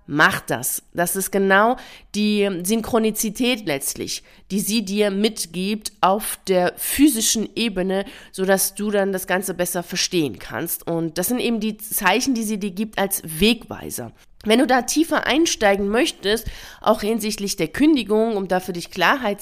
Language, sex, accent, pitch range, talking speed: German, female, German, 190-230 Hz, 160 wpm